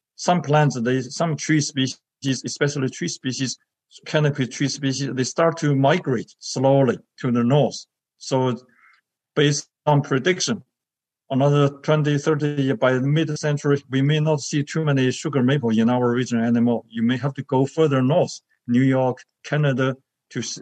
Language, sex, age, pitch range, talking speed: English, male, 50-69, 125-145 Hz, 155 wpm